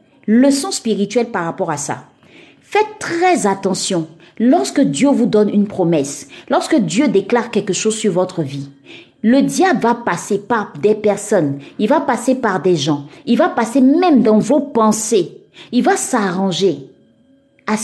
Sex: female